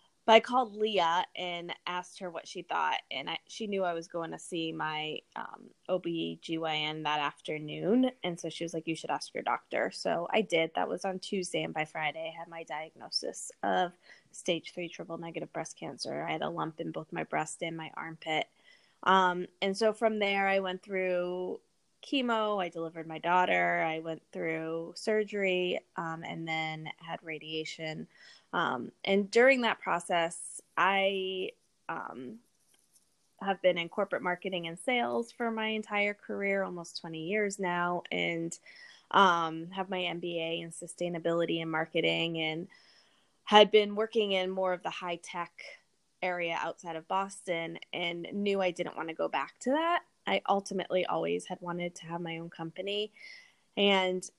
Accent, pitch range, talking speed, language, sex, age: American, 165-195 Hz, 170 wpm, English, female, 20-39